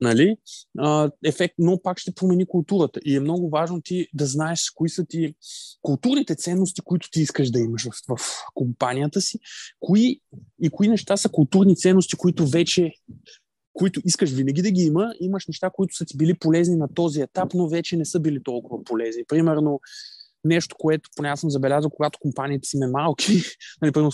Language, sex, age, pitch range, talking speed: Bulgarian, male, 20-39, 140-175 Hz, 175 wpm